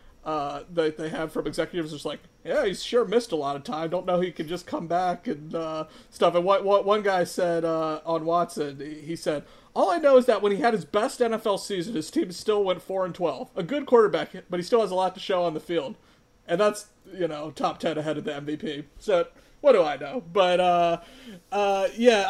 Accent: American